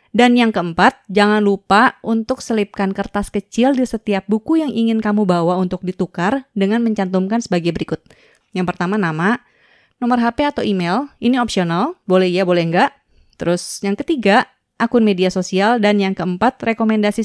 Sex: female